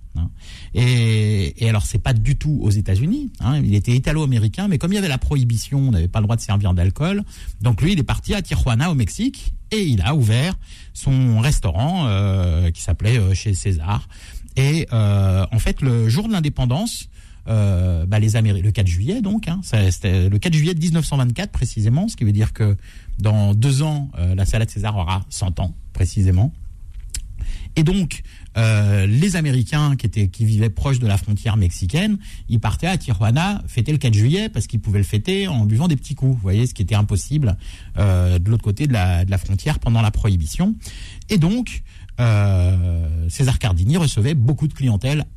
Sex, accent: male, French